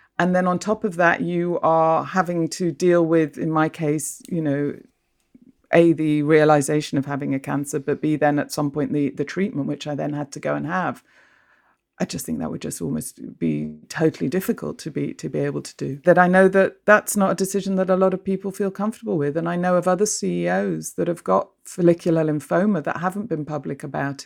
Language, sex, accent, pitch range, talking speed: English, female, British, 150-180 Hz, 225 wpm